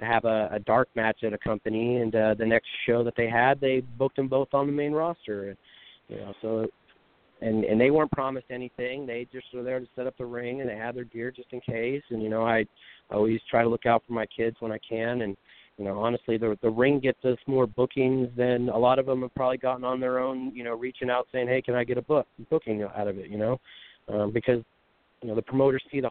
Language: English